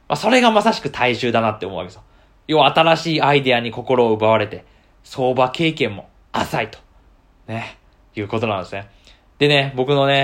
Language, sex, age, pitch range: Japanese, male, 20-39, 110-145 Hz